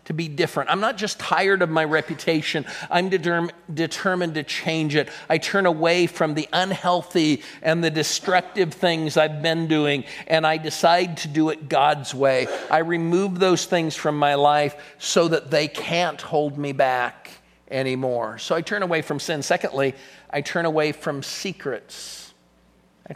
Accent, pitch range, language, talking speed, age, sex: American, 145-175 Hz, English, 165 wpm, 50-69, male